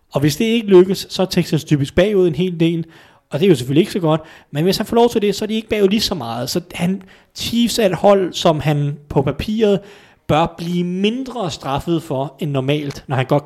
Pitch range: 125-165 Hz